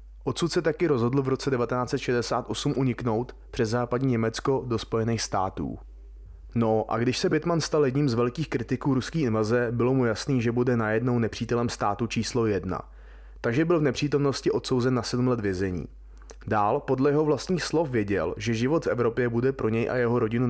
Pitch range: 110-130 Hz